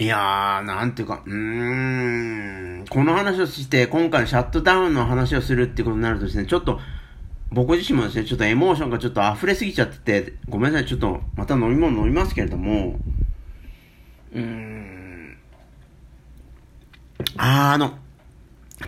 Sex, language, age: male, Japanese, 50-69